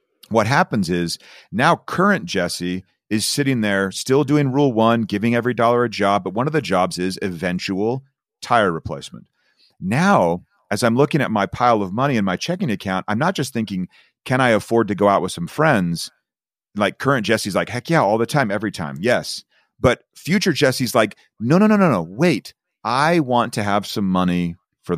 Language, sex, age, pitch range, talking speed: English, male, 40-59, 100-140 Hz, 195 wpm